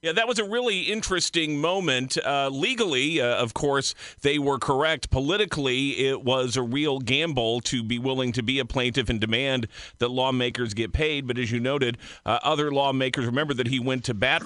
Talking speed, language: 195 wpm, English